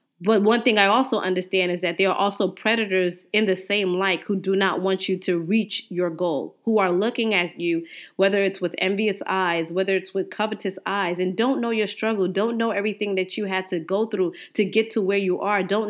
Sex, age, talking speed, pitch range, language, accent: female, 20-39, 230 wpm, 185-230 Hz, English, American